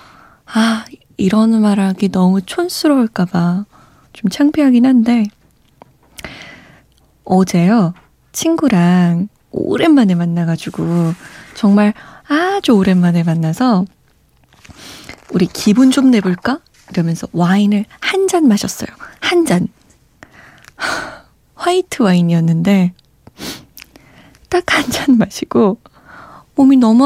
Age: 20-39